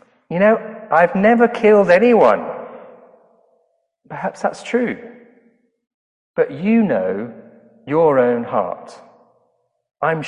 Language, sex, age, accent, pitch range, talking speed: English, male, 40-59, British, 165-235 Hz, 95 wpm